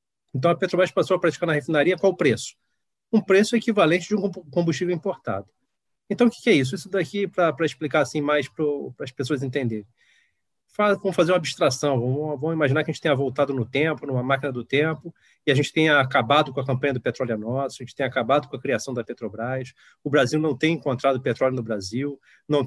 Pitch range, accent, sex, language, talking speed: 130-170 Hz, Brazilian, male, Portuguese, 210 wpm